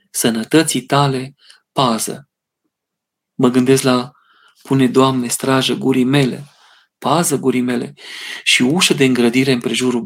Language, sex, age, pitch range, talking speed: Romanian, male, 40-59, 130-185 Hz, 120 wpm